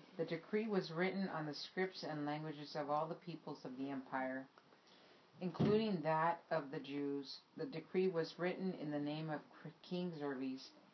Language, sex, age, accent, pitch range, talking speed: English, female, 50-69, American, 140-175 Hz, 170 wpm